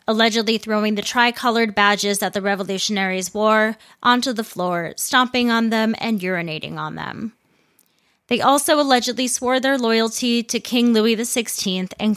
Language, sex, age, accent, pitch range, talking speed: English, female, 20-39, American, 185-240 Hz, 150 wpm